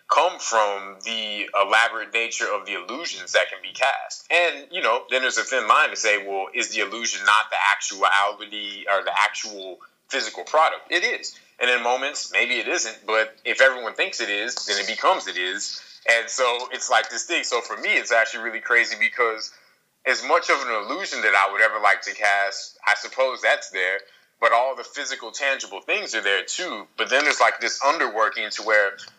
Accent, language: American, English